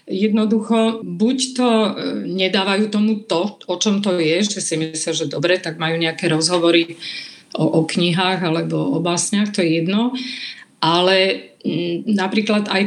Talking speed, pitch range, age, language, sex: 150 wpm, 175-215 Hz, 50-69, Slovak, female